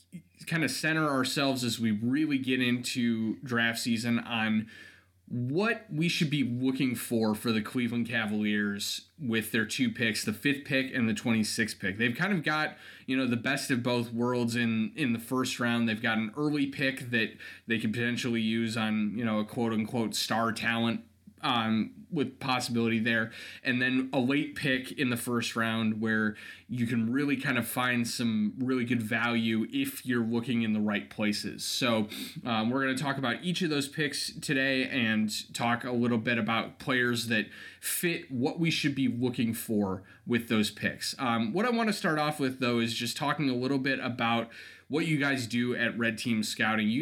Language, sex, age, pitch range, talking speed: English, male, 20-39, 115-135 Hz, 195 wpm